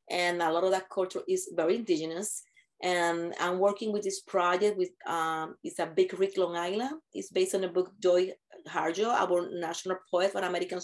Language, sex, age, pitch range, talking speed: English, female, 30-49, 175-205 Hz, 195 wpm